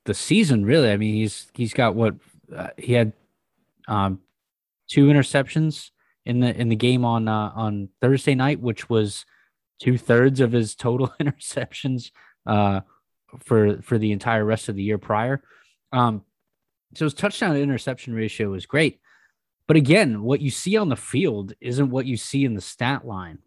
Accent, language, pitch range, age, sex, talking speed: American, English, 105-130 Hz, 20-39, male, 165 wpm